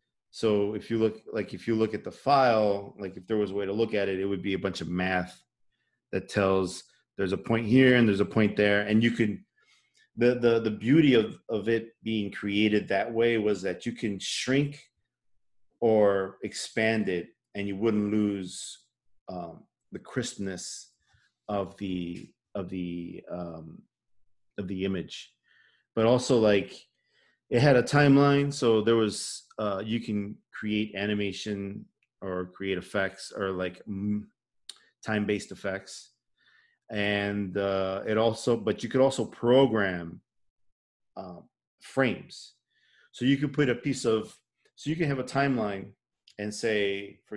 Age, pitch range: 30-49, 100-115 Hz